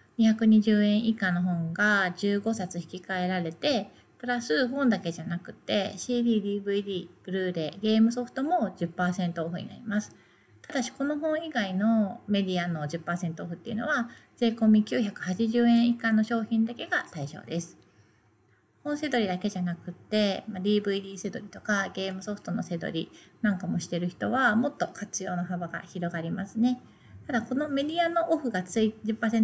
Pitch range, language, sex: 185-240 Hz, Japanese, female